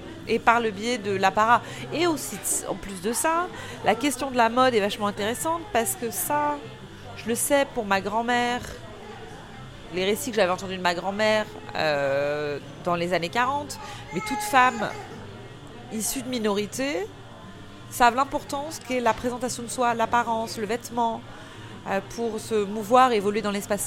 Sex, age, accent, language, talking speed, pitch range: female, 30-49, French, French, 165 wpm, 160-225 Hz